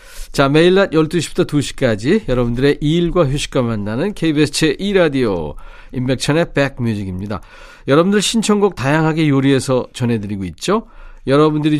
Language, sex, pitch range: Korean, male, 120-165 Hz